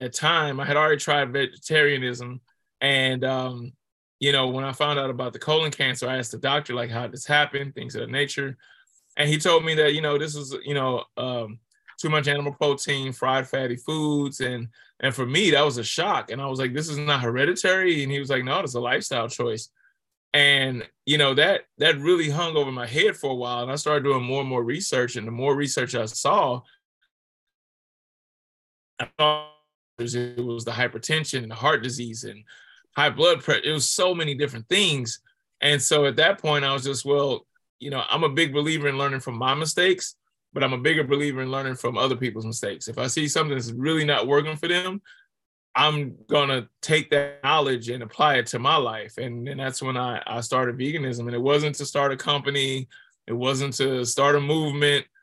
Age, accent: 20-39, American